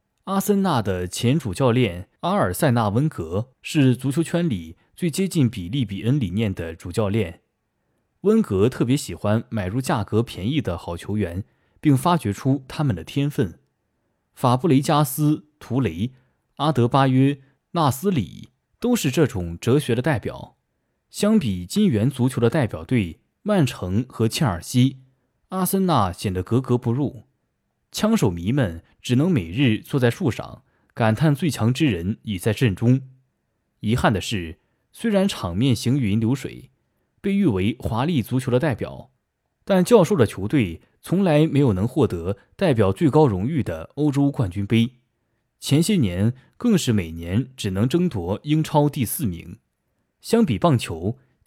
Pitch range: 105-150 Hz